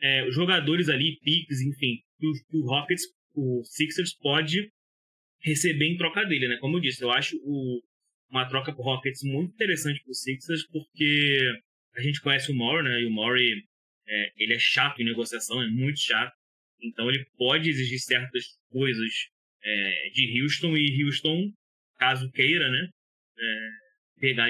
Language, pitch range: Portuguese, 125-155 Hz